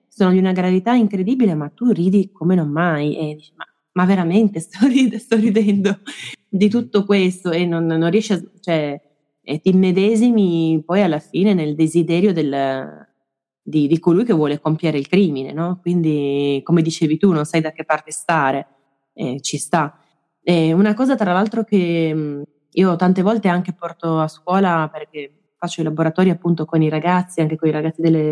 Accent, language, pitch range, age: native, Italian, 155-185 Hz, 20-39